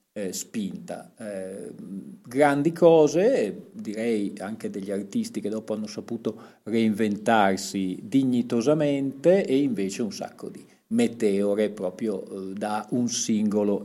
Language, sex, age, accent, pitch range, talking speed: Italian, male, 40-59, native, 100-135 Hz, 115 wpm